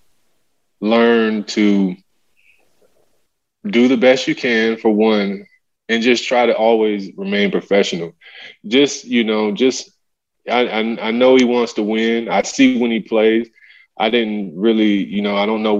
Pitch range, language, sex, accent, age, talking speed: 100-120 Hz, English, male, American, 20-39, 155 wpm